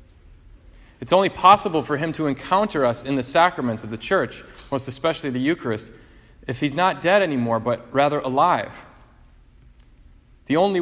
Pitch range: 120-155 Hz